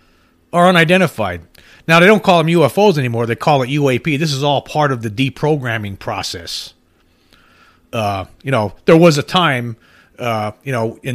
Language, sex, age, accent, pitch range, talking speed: English, male, 40-59, American, 110-150 Hz, 170 wpm